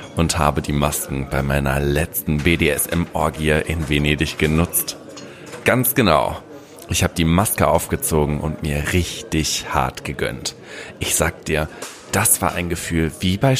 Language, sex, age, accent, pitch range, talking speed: German, male, 40-59, German, 80-110 Hz, 140 wpm